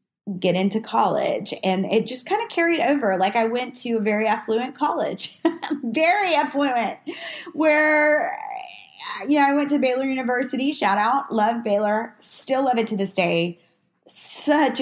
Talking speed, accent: 160 wpm, American